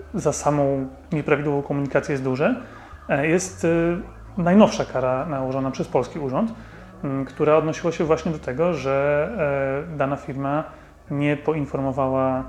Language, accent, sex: Polish, native, male